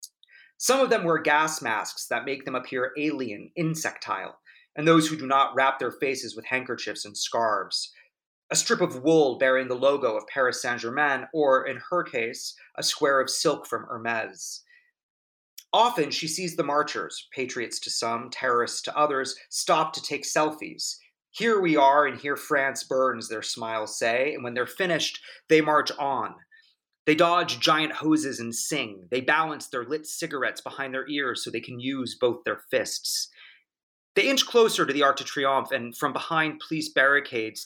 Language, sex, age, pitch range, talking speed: English, male, 30-49, 130-170 Hz, 175 wpm